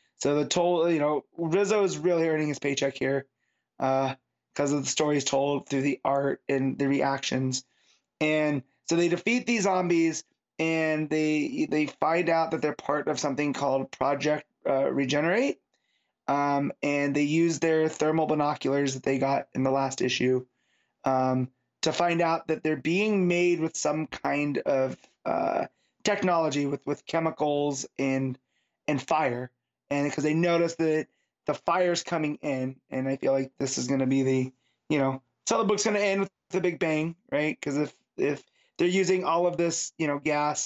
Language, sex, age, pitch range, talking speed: English, male, 20-39, 135-165 Hz, 180 wpm